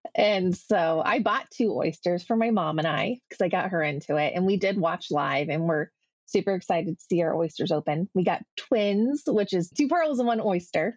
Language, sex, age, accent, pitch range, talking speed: English, female, 20-39, American, 170-200 Hz, 225 wpm